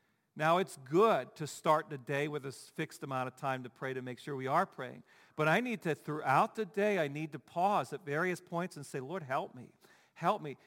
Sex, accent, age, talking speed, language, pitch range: male, American, 50-69, 235 wpm, English, 140-180 Hz